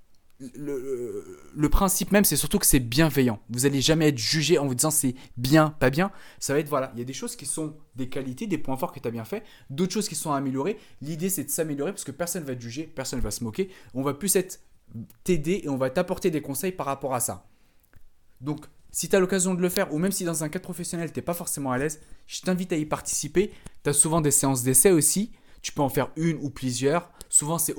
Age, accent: 20-39, French